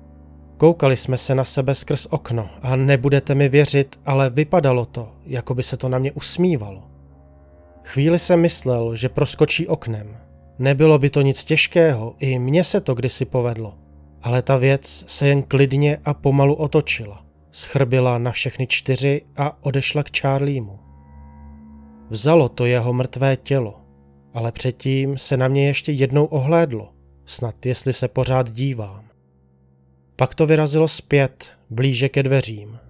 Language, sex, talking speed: Czech, male, 145 wpm